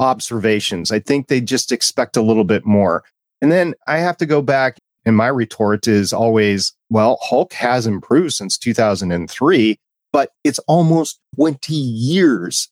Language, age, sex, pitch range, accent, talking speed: English, 40-59, male, 100-125 Hz, American, 155 wpm